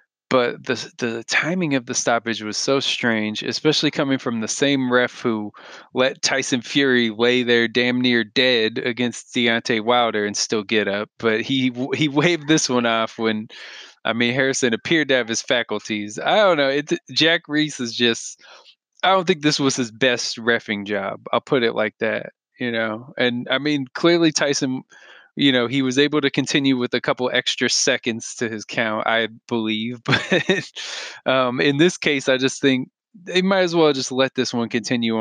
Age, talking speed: 20-39, 195 wpm